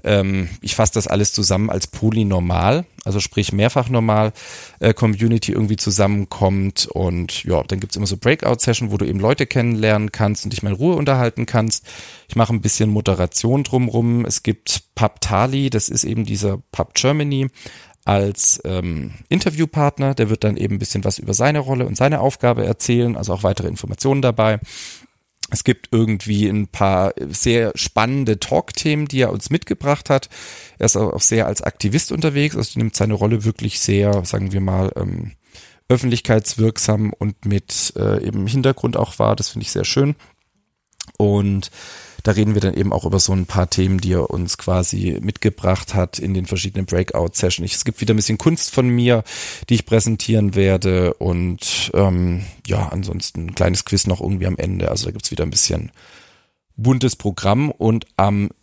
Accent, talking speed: German, 175 wpm